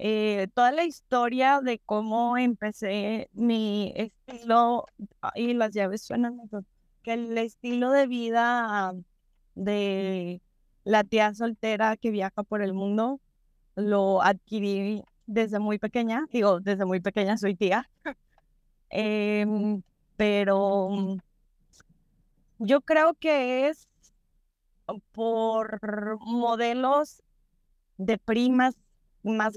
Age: 20-39